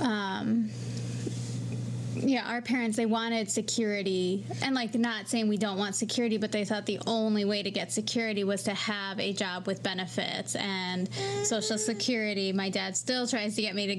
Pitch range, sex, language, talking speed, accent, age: 195-235 Hz, female, English, 180 wpm, American, 20-39